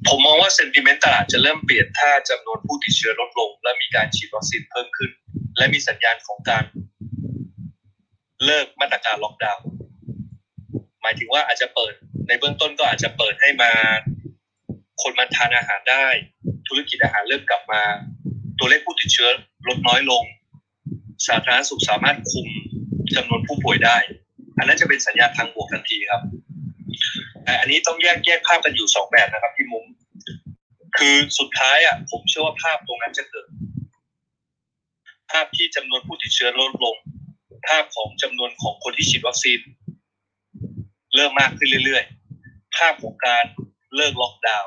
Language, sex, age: Thai, male, 20-39